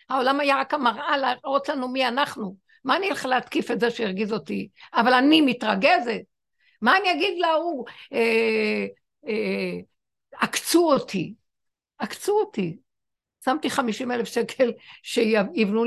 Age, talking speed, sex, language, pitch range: 60-79, 130 wpm, female, Hebrew, 185-245 Hz